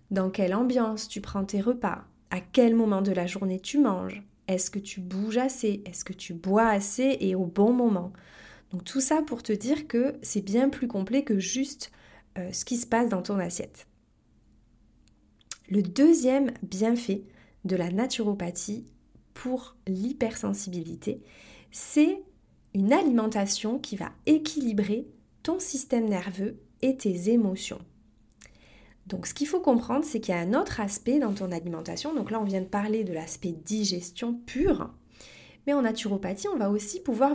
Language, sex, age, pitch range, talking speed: French, female, 30-49, 195-260 Hz, 160 wpm